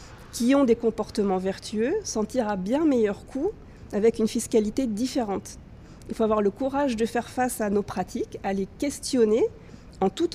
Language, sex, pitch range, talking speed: French, female, 205-245 Hz, 180 wpm